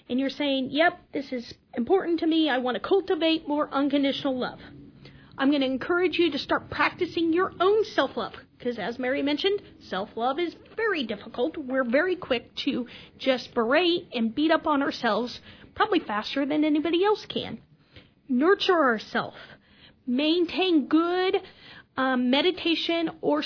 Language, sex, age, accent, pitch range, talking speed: English, female, 40-59, American, 245-310 Hz, 150 wpm